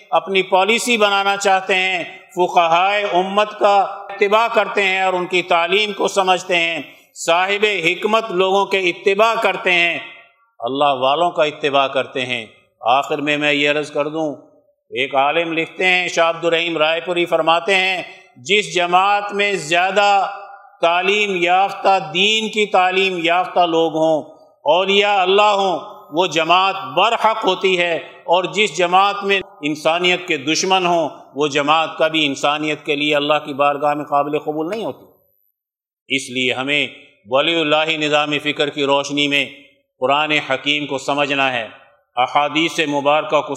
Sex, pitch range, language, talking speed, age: male, 145-190 Hz, Urdu, 150 wpm, 50-69